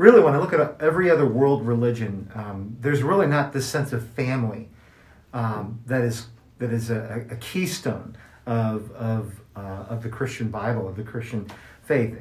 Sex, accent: male, American